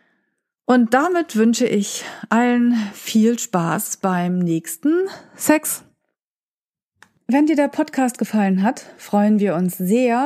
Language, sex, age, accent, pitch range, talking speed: German, female, 40-59, German, 180-240 Hz, 115 wpm